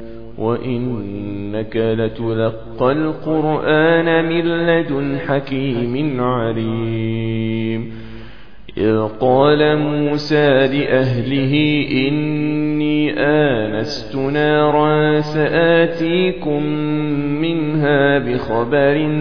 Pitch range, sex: 145-180 Hz, male